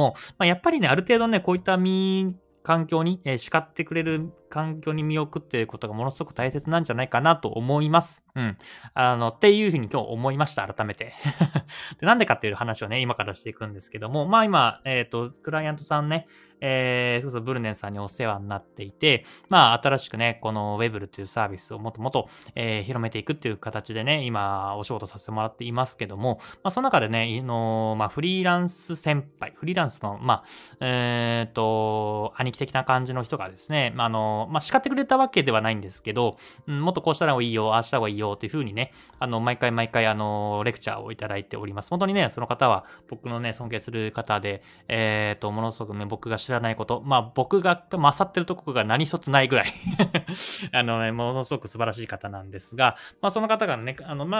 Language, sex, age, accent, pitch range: Japanese, male, 20-39, native, 110-160 Hz